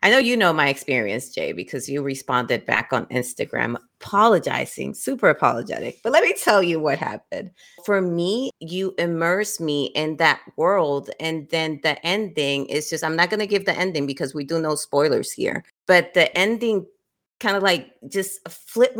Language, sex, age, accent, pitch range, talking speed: English, female, 30-49, American, 140-180 Hz, 185 wpm